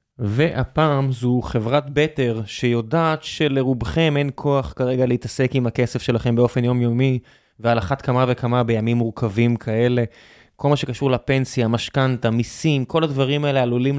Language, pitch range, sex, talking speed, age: Hebrew, 120-145 Hz, male, 135 wpm, 20-39